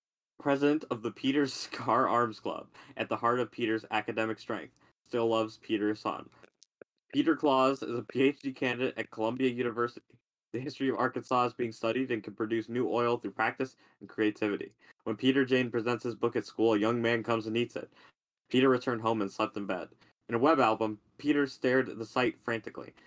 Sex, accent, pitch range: male, American, 110-130 Hz